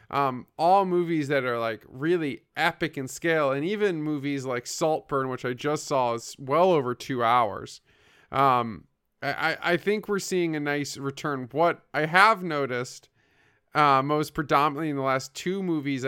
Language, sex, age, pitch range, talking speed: English, male, 20-39, 130-160 Hz, 170 wpm